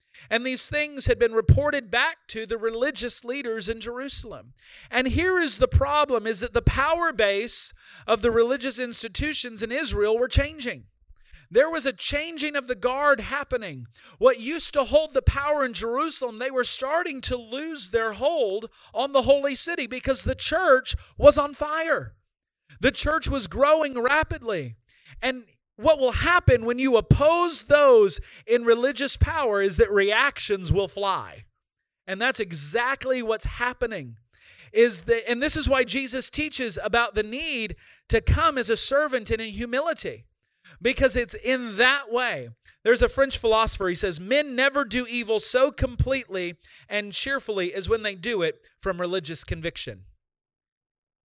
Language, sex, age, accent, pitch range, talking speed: English, male, 40-59, American, 225-290 Hz, 160 wpm